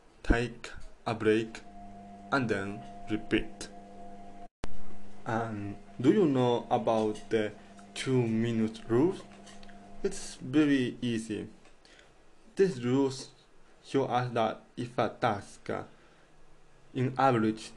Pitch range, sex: 100-125 Hz, male